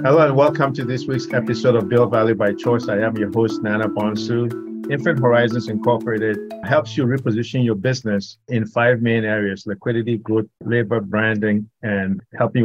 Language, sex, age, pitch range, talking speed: English, male, 50-69, 105-125 Hz, 170 wpm